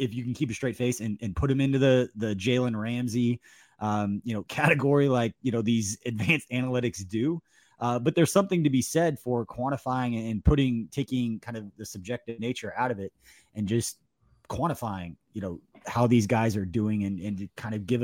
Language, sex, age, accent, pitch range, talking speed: English, male, 20-39, American, 110-135 Hz, 210 wpm